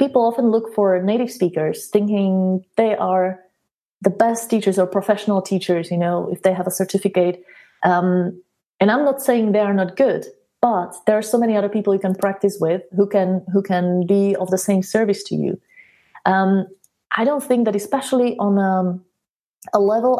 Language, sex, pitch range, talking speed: English, female, 185-225 Hz, 185 wpm